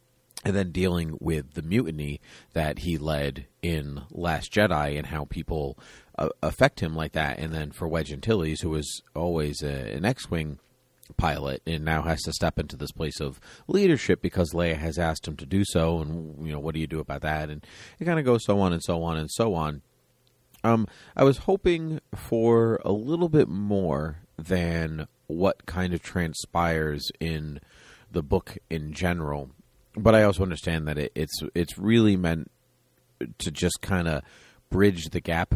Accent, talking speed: American, 180 wpm